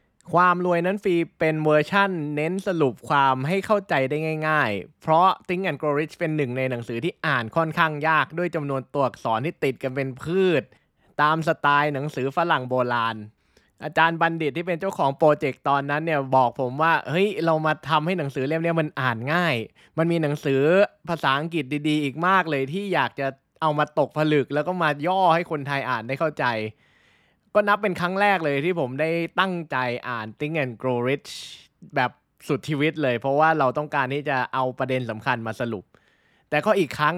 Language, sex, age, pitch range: Thai, male, 20-39, 135-170 Hz